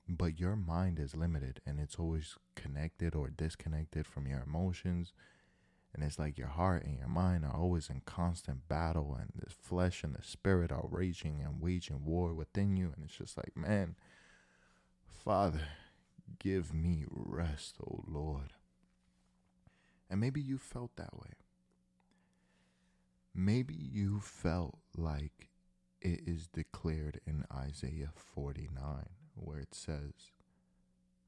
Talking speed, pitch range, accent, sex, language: 135 wpm, 65-90 Hz, American, male, English